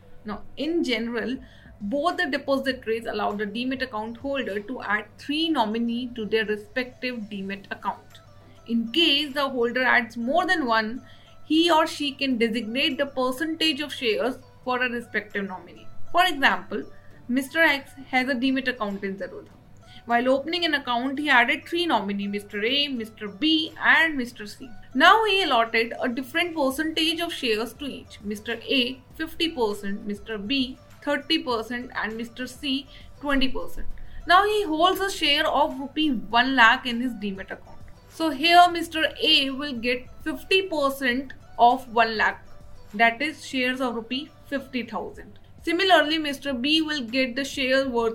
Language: English